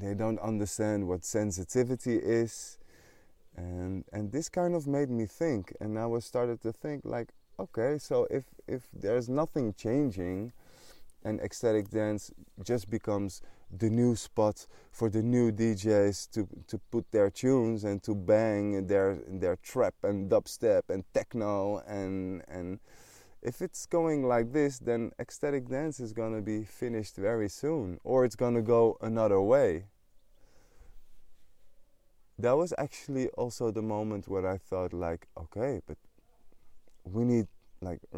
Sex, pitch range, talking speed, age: male, 95-120 Hz, 145 wpm, 20-39